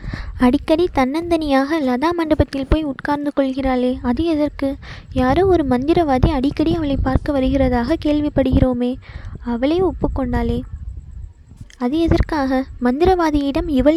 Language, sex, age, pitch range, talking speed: Tamil, female, 20-39, 255-305 Hz, 110 wpm